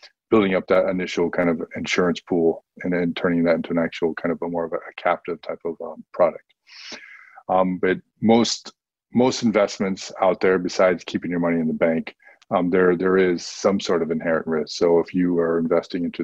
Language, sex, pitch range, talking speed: English, male, 85-95 Hz, 205 wpm